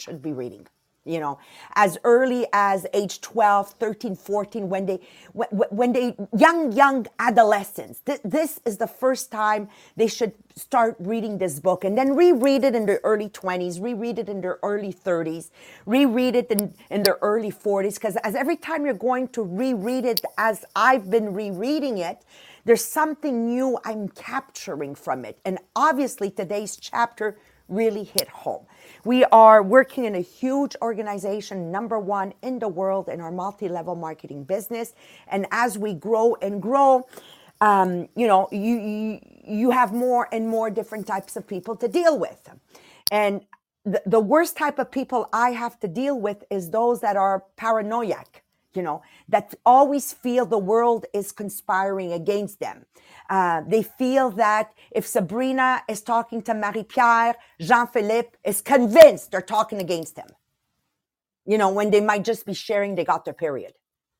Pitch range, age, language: 200-245 Hz, 40-59, English